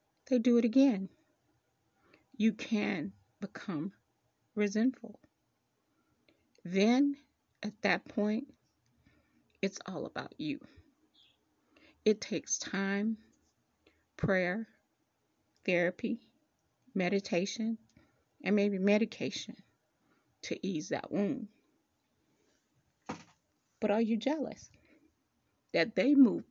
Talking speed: 80 wpm